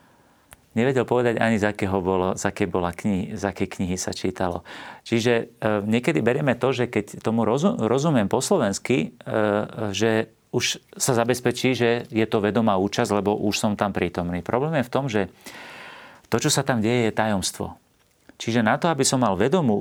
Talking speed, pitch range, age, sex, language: 170 wpm, 100-115 Hz, 40-59, male, Slovak